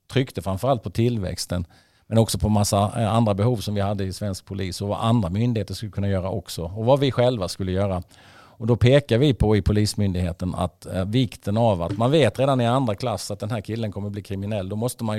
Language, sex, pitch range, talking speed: English, male, 100-120 Hz, 235 wpm